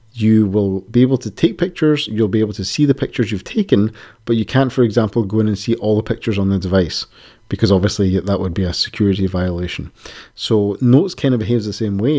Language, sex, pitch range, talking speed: English, male, 100-115 Hz, 230 wpm